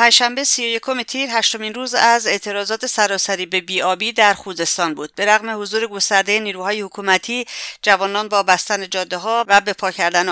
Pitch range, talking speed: 185-225 Hz, 170 wpm